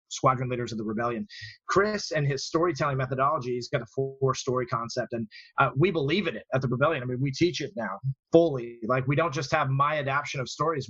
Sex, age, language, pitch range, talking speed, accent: male, 30-49, English, 130-160 Hz, 225 wpm, American